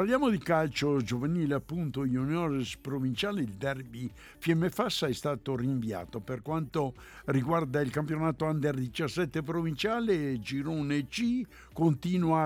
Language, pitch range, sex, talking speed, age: Italian, 140-175 Hz, male, 120 wpm, 60-79